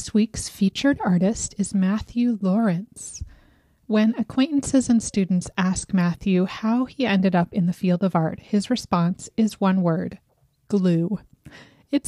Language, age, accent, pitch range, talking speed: English, 30-49, American, 185-220 Hz, 145 wpm